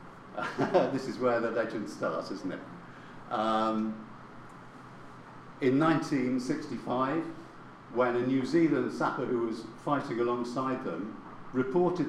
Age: 50-69